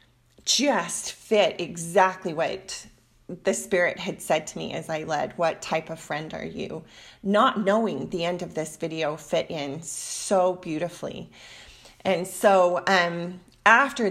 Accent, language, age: American, English, 30-49